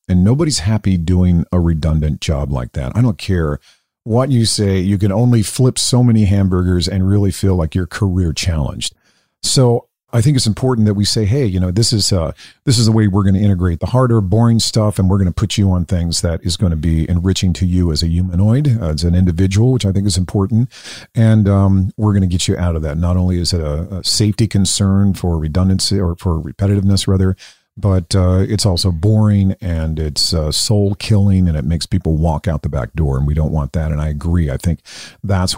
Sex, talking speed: male, 230 wpm